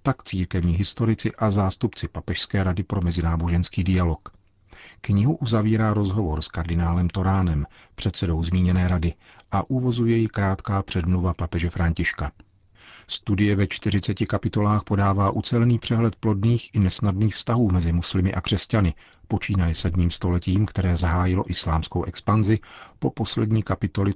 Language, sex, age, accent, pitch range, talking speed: Czech, male, 40-59, native, 85-105 Hz, 125 wpm